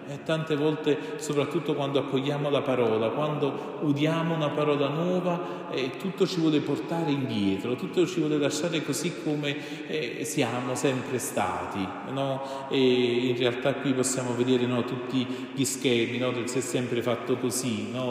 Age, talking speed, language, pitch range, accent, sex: 40-59, 155 wpm, Italian, 120-145 Hz, native, male